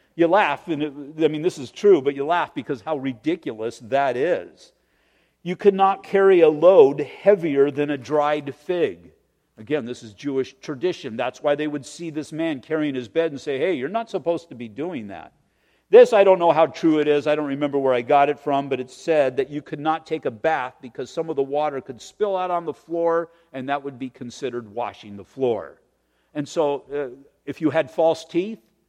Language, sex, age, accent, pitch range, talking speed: English, male, 50-69, American, 135-170 Hz, 220 wpm